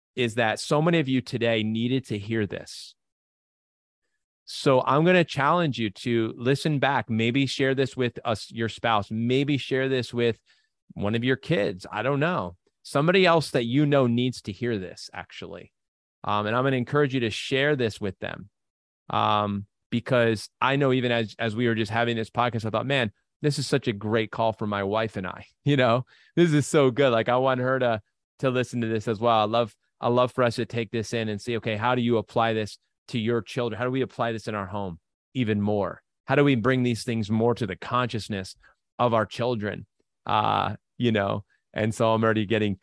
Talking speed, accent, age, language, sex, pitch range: 220 wpm, American, 30-49, English, male, 110-130 Hz